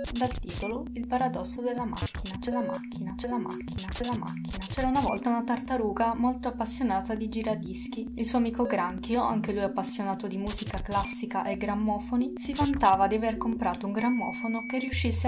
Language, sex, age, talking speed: Italian, female, 20-39, 175 wpm